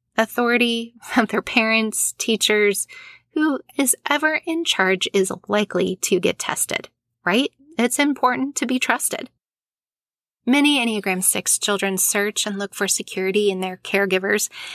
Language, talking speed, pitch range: English, 135 wpm, 185-225 Hz